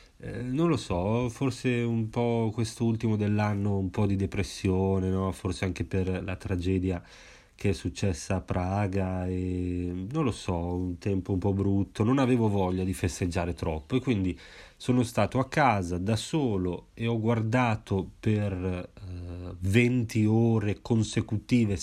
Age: 30-49